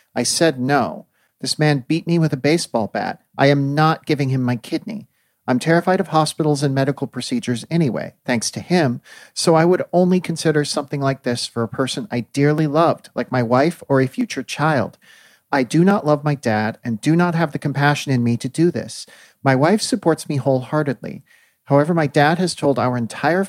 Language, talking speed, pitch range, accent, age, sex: English, 200 wpm, 135-165 Hz, American, 40-59, male